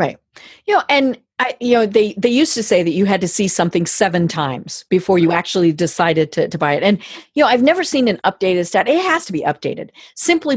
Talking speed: 245 wpm